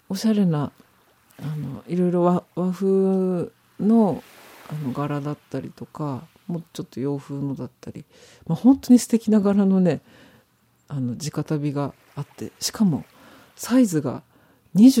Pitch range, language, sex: 135-195 Hz, Japanese, female